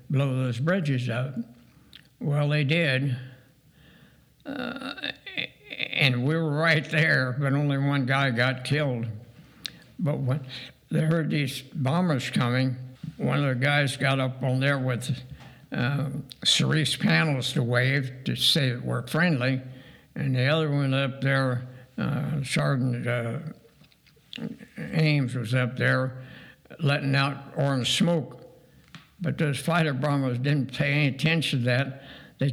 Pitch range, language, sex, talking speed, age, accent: 130-155 Hz, English, male, 135 wpm, 60-79, American